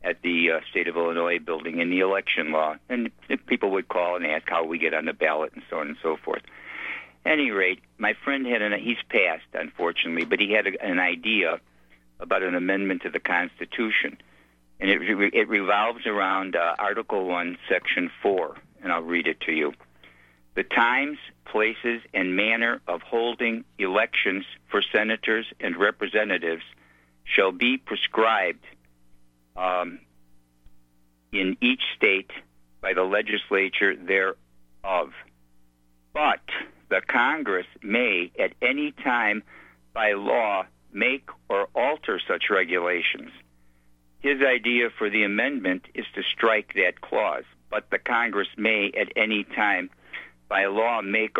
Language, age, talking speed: English, 60-79, 145 wpm